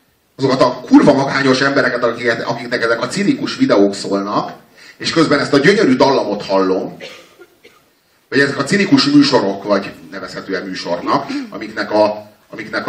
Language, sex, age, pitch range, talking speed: Hungarian, male, 30-49, 100-130 Hz, 125 wpm